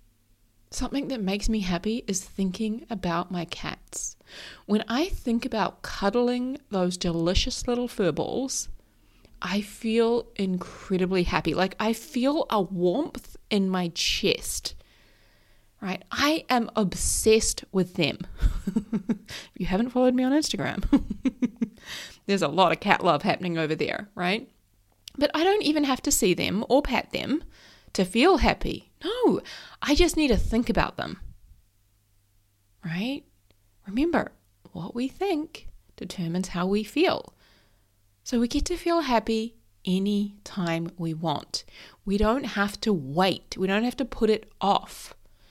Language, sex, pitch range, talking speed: English, female, 175-240 Hz, 140 wpm